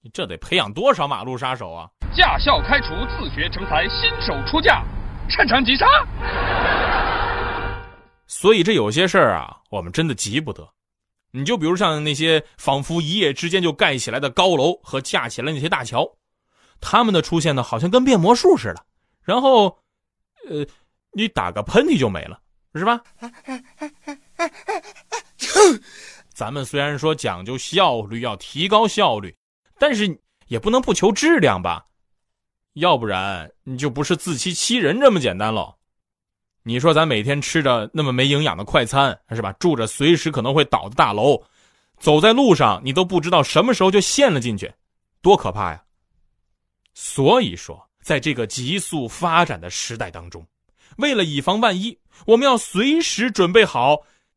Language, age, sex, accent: Chinese, 20-39, male, native